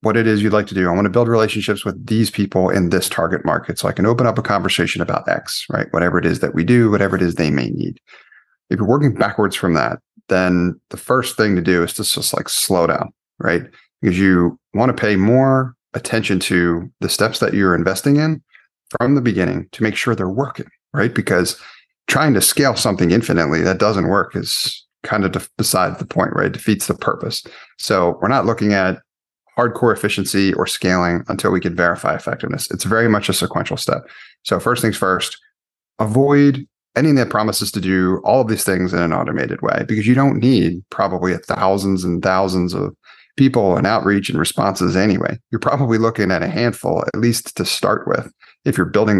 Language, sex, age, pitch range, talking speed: English, male, 30-49, 95-115 Hz, 205 wpm